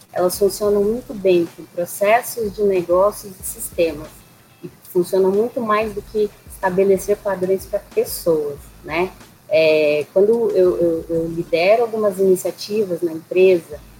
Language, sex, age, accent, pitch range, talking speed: Portuguese, female, 20-39, Brazilian, 175-210 Hz, 135 wpm